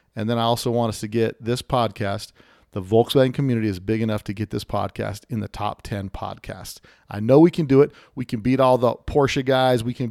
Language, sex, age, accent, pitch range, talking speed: English, male, 40-59, American, 105-125 Hz, 235 wpm